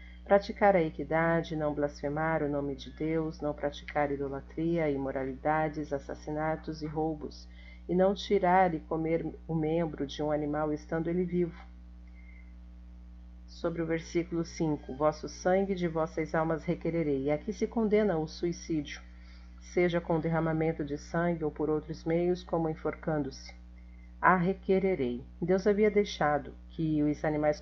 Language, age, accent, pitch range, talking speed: Portuguese, 50-69, Brazilian, 125-170 Hz, 140 wpm